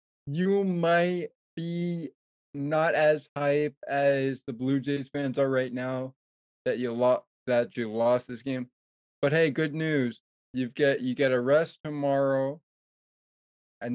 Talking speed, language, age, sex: 140 wpm, English, 20-39, male